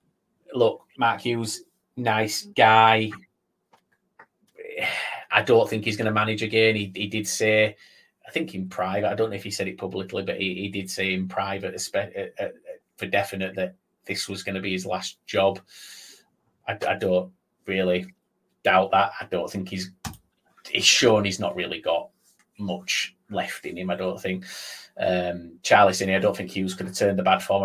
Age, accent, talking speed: 30-49, British, 180 wpm